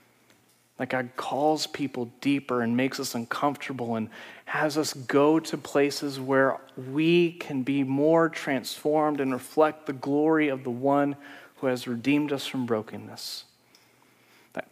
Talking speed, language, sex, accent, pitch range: 145 wpm, English, male, American, 130-165 Hz